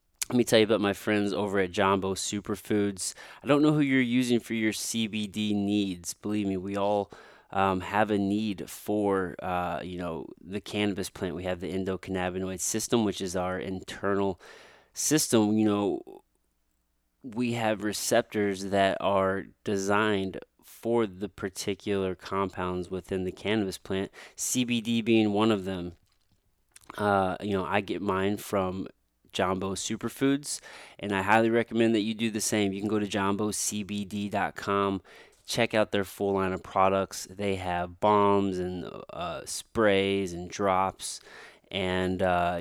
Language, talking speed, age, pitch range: English, 150 wpm, 20-39, 95-105 Hz